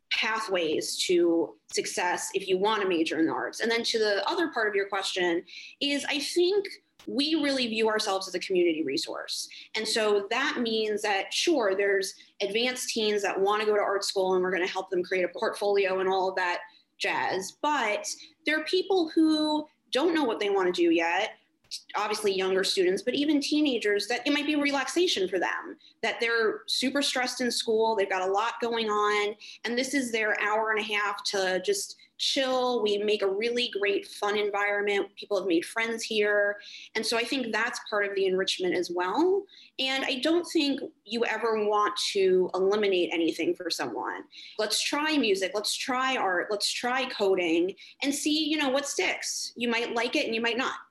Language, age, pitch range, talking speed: English, 20-39, 205-300 Hz, 200 wpm